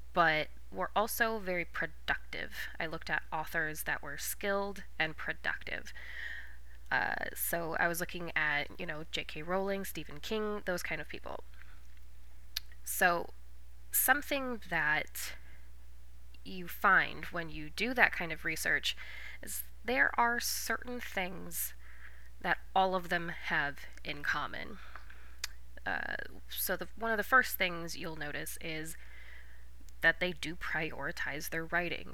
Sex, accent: female, American